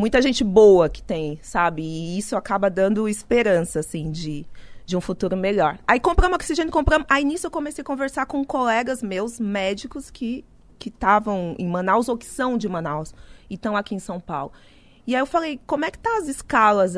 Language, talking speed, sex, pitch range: Portuguese, 205 wpm, female, 195-270 Hz